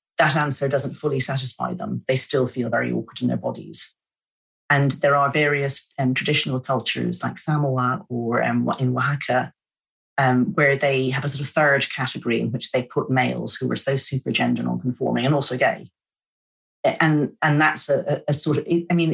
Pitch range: 125-160 Hz